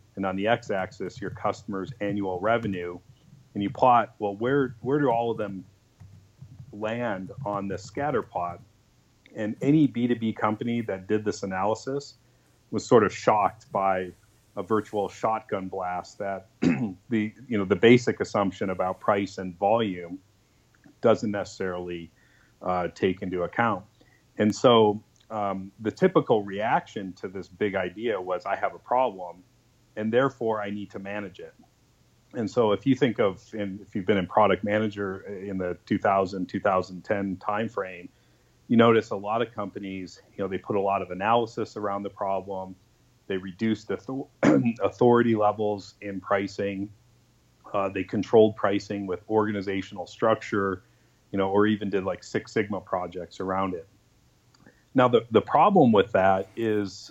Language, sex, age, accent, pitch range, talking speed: English, male, 40-59, American, 95-115 Hz, 155 wpm